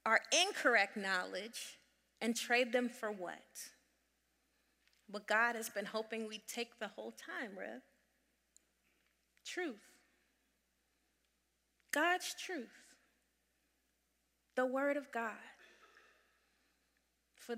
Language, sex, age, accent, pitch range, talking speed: English, female, 30-49, American, 220-265 Hz, 90 wpm